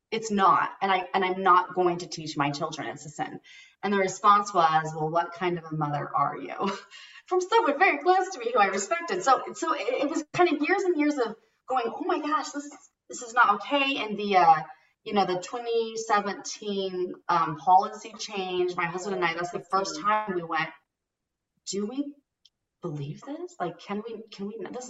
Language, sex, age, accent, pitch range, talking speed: English, female, 30-49, American, 180-275 Hz, 205 wpm